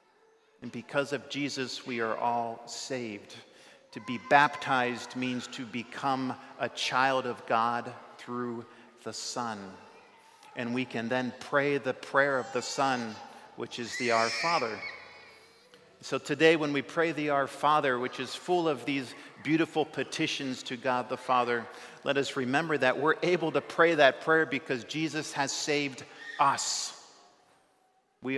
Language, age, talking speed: English, 50-69, 150 wpm